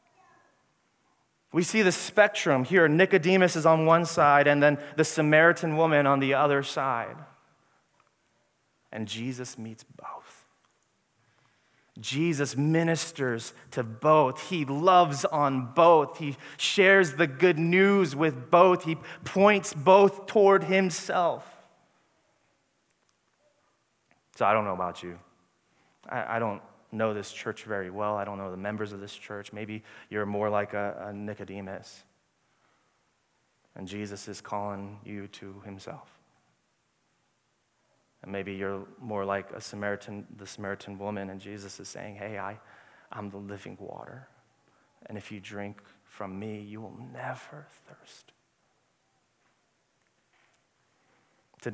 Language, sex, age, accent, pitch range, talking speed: English, male, 30-49, American, 100-160 Hz, 130 wpm